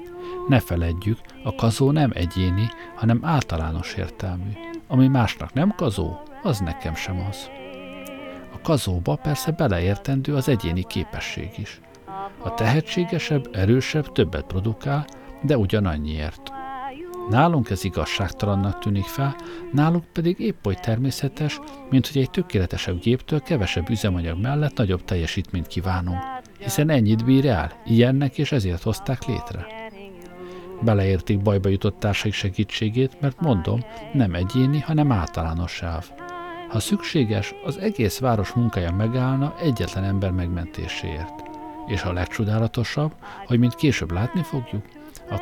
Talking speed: 125 wpm